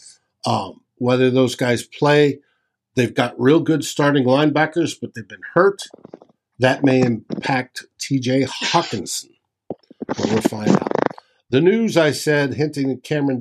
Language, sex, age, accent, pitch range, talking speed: English, male, 50-69, American, 125-155 Hz, 140 wpm